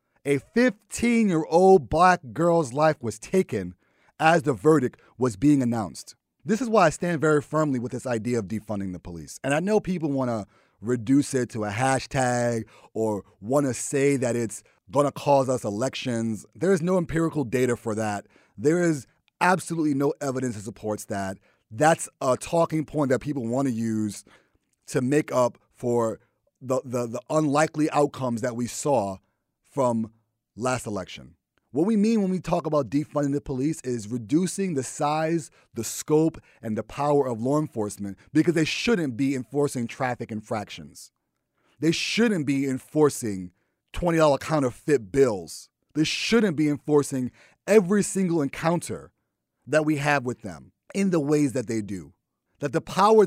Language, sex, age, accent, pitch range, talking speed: English, male, 30-49, American, 120-155 Hz, 165 wpm